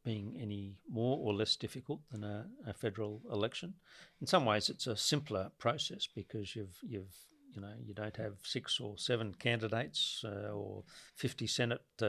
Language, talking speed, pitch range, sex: English, 170 wpm, 100-120 Hz, male